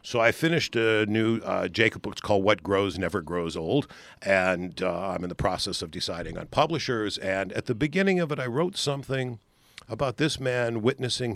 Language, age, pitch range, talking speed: English, 50-69, 95-130 Hz, 200 wpm